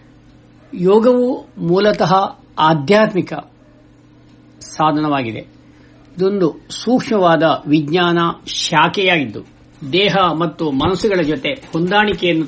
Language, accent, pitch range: Kannada, native, 125-175 Hz